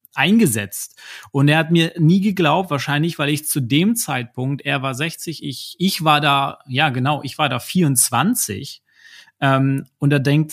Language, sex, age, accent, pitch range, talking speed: German, male, 30-49, German, 135-170 Hz, 170 wpm